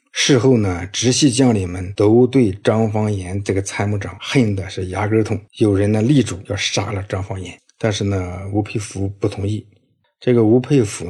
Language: Chinese